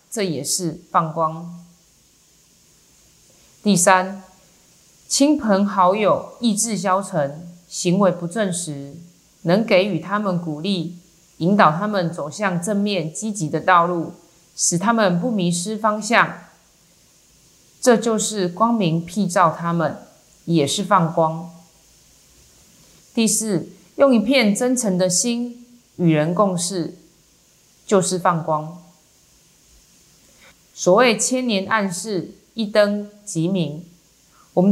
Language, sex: Chinese, female